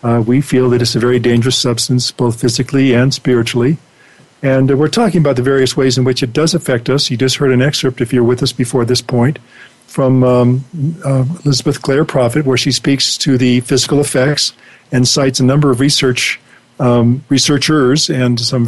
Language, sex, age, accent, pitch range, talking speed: English, male, 50-69, American, 125-150 Hz, 200 wpm